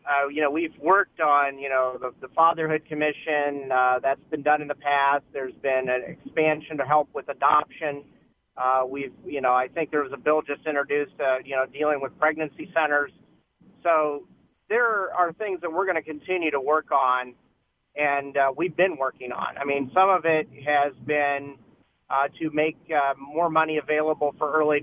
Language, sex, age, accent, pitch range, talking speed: English, male, 40-59, American, 140-165 Hz, 195 wpm